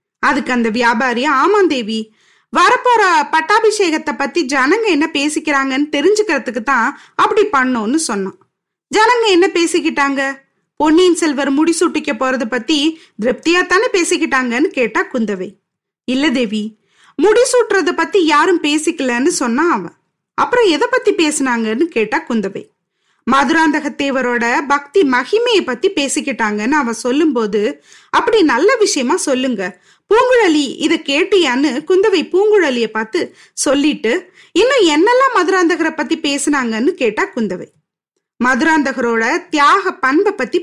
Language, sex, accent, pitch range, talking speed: Tamil, female, native, 255-370 Hz, 105 wpm